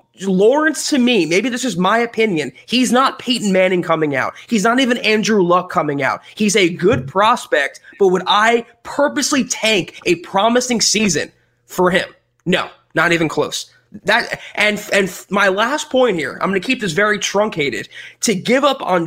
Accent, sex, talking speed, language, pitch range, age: American, male, 180 wpm, English, 185-250 Hz, 20-39